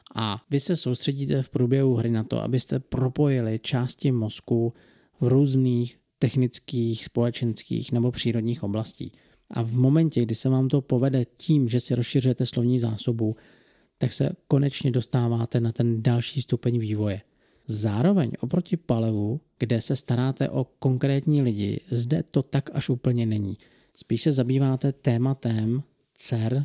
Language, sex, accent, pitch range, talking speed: Czech, male, native, 110-135 Hz, 140 wpm